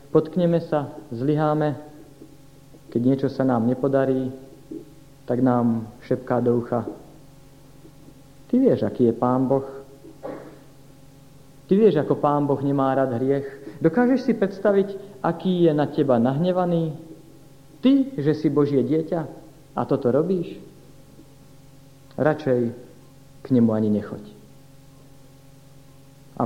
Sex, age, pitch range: male, 50-69, 135-155 Hz